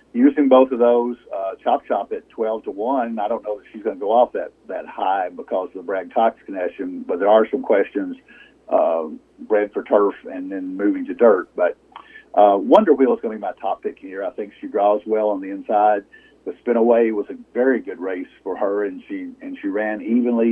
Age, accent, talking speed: 50-69, American, 230 wpm